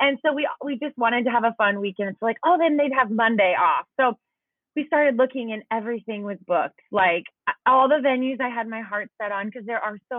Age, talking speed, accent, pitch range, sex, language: 20-39, 240 wpm, American, 195-240 Hz, female, English